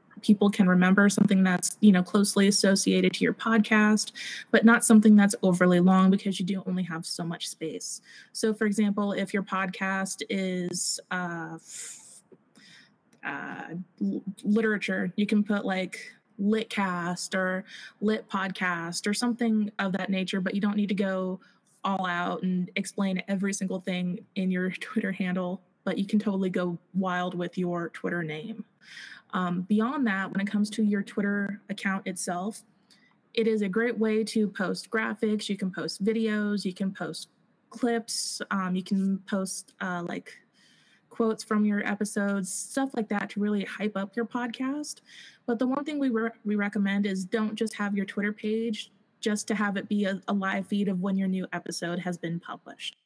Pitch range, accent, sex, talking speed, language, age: 185-215 Hz, American, female, 175 wpm, English, 20-39